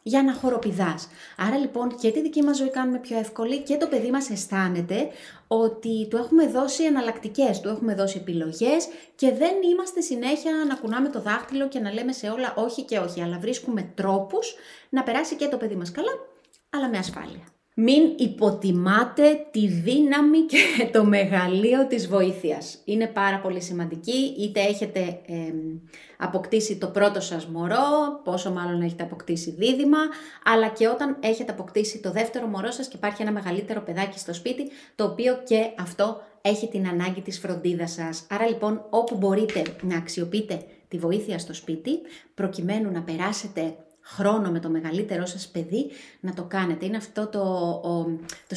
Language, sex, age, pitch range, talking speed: Greek, female, 30-49, 185-255 Hz, 165 wpm